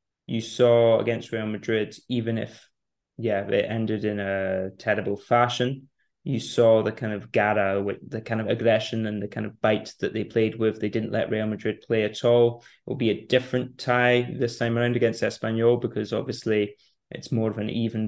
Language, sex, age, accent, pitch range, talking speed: English, male, 20-39, British, 110-120 Hz, 195 wpm